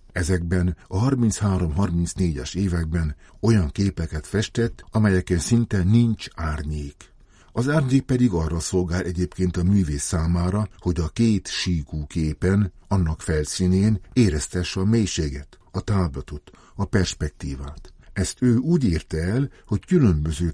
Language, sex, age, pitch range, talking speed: Hungarian, male, 60-79, 80-100 Hz, 125 wpm